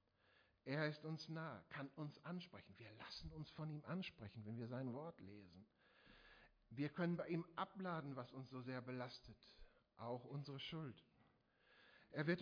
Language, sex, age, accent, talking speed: German, male, 60-79, German, 160 wpm